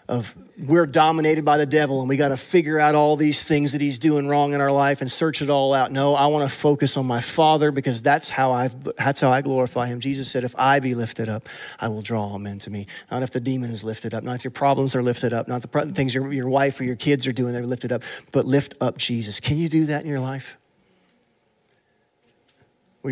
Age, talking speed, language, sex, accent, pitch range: 40-59, 250 wpm, English, male, American, 110-140 Hz